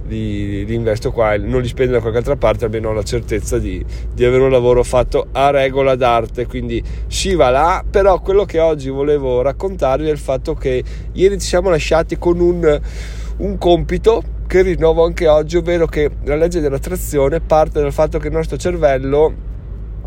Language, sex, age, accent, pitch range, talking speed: Italian, male, 20-39, native, 115-150 Hz, 185 wpm